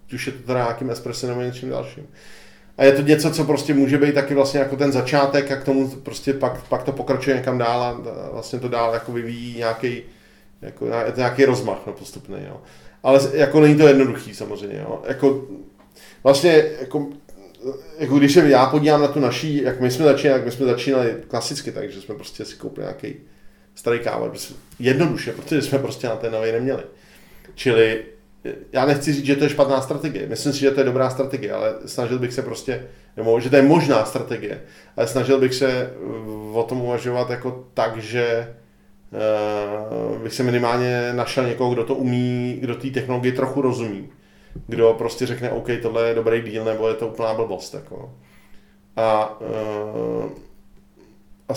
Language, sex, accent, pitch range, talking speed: Czech, male, native, 115-140 Hz, 175 wpm